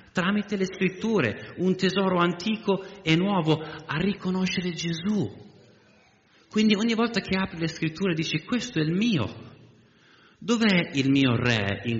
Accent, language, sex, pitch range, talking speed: native, Italian, male, 105-155 Hz, 140 wpm